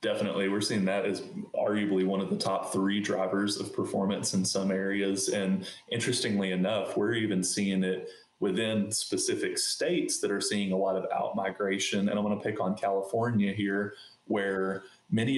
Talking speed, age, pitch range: 170 wpm, 20-39, 95-105 Hz